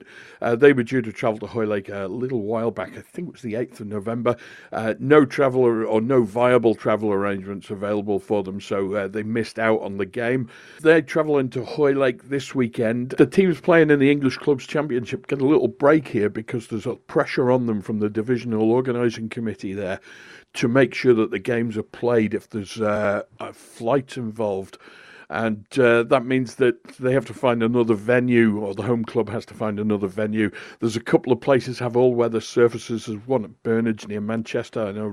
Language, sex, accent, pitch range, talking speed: English, male, British, 110-130 Hz, 205 wpm